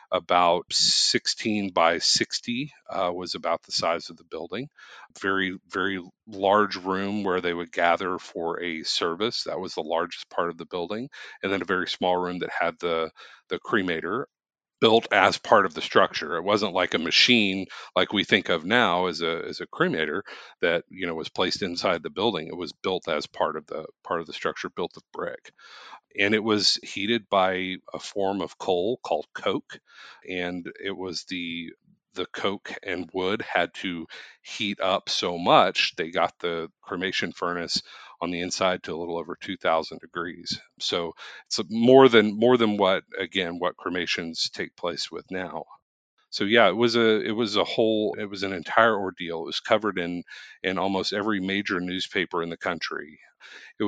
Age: 40-59